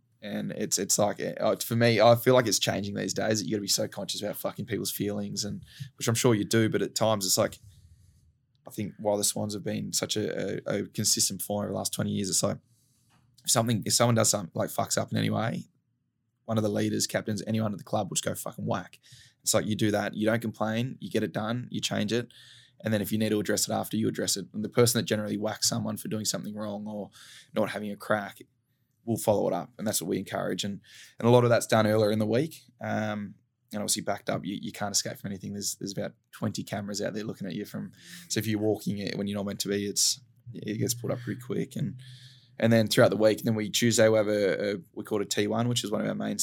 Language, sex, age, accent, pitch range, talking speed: English, male, 20-39, Australian, 105-120 Hz, 270 wpm